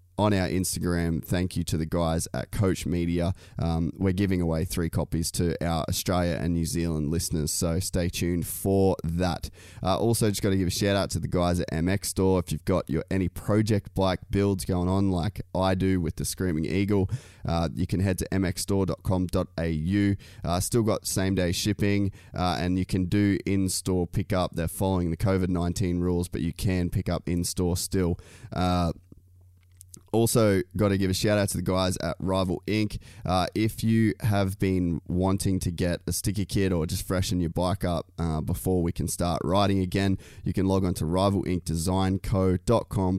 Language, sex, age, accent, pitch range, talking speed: English, male, 20-39, Australian, 85-100 Hz, 185 wpm